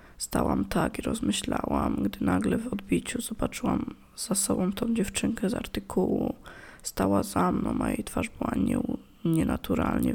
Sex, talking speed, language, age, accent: female, 135 wpm, Polish, 20-39, native